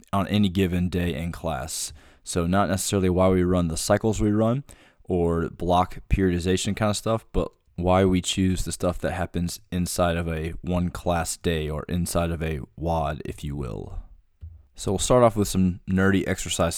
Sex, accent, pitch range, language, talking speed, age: male, American, 85-95 Hz, English, 185 wpm, 20-39